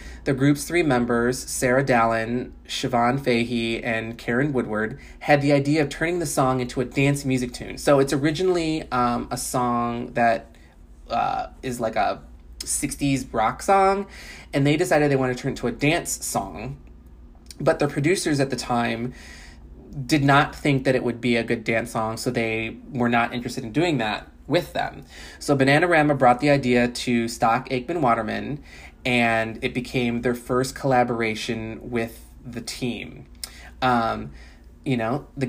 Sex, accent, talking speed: male, American, 165 wpm